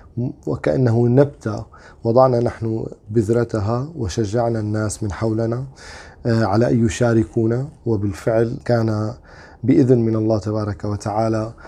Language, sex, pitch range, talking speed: Arabic, male, 105-120 Hz, 100 wpm